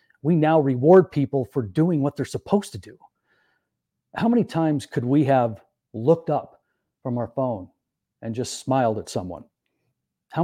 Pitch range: 120-155 Hz